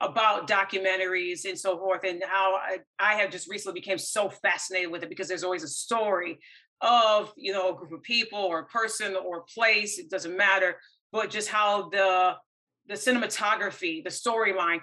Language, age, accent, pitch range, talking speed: English, 40-59, American, 185-220 Hz, 185 wpm